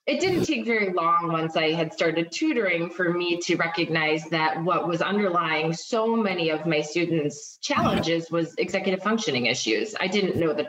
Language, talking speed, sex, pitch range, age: English, 180 wpm, female, 165-220 Hz, 20-39